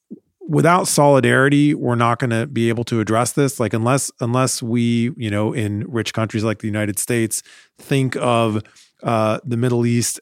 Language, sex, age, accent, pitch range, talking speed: English, male, 30-49, American, 105-130 Hz, 175 wpm